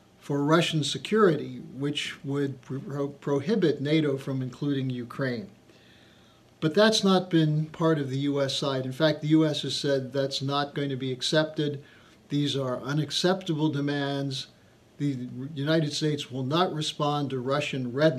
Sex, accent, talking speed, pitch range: male, American, 145 wpm, 135-165 Hz